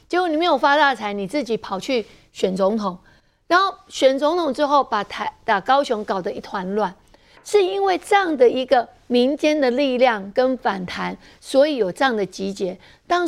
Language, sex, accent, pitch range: Chinese, female, American, 225-320 Hz